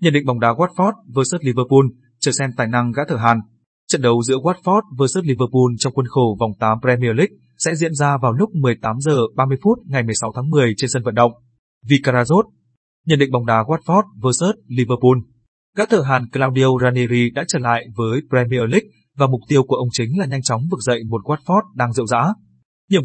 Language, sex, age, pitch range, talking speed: Vietnamese, male, 20-39, 120-155 Hz, 205 wpm